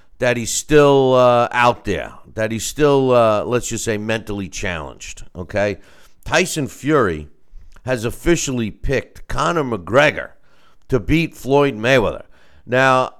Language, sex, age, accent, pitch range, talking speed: English, male, 50-69, American, 105-150 Hz, 125 wpm